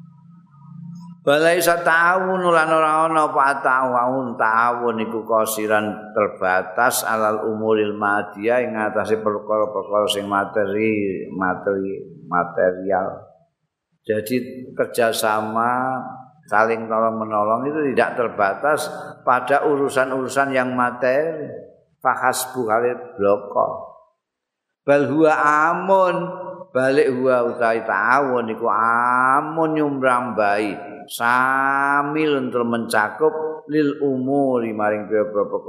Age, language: 50-69, Indonesian